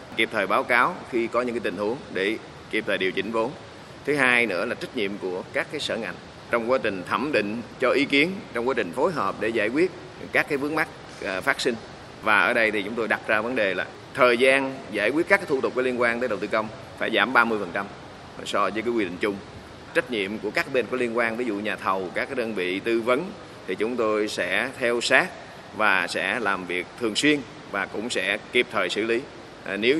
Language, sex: Vietnamese, male